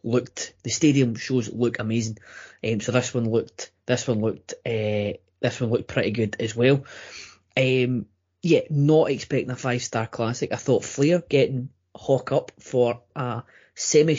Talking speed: 165 wpm